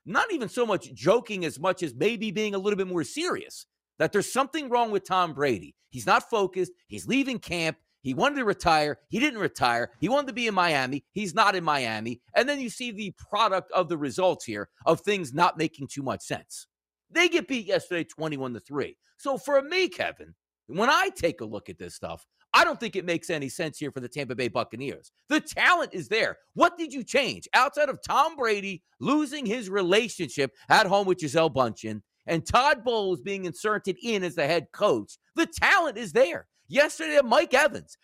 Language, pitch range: English, 160-270 Hz